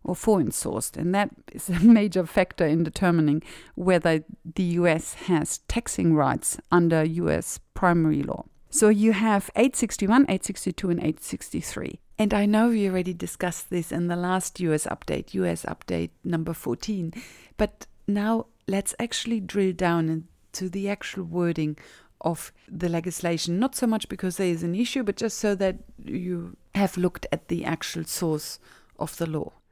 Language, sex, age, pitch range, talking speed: English, female, 50-69, 165-210 Hz, 160 wpm